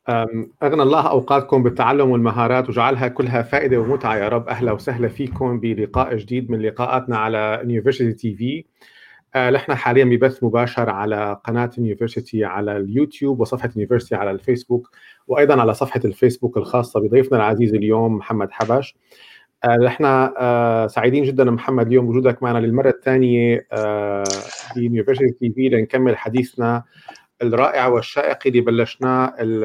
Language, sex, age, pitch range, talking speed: Arabic, male, 40-59, 115-130 Hz, 135 wpm